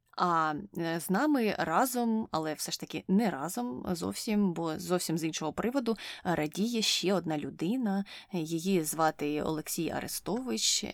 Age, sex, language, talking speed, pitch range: 20-39, female, Ukrainian, 130 wpm, 165-215 Hz